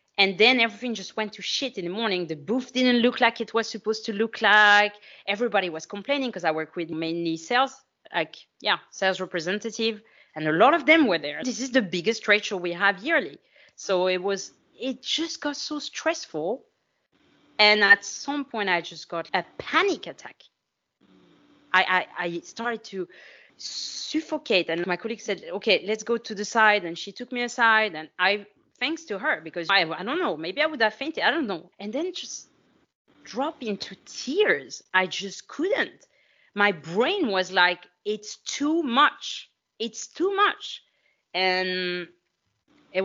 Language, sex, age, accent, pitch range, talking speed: English, female, 30-49, French, 185-240 Hz, 180 wpm